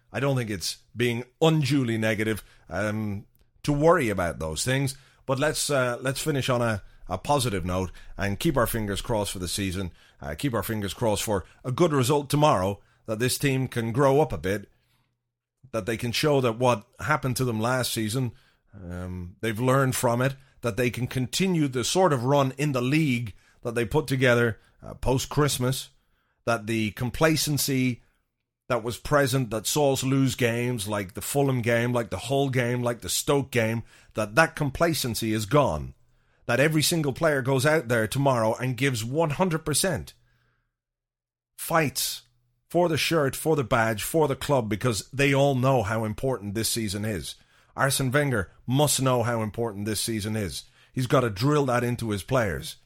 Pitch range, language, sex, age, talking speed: 110-140 Hz, English, male, 30-49, 180 wpm